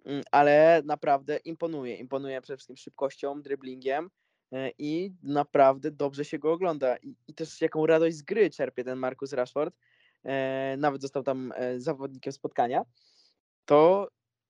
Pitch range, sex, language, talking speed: 130-160 Hz, male, Polish, 125 wpm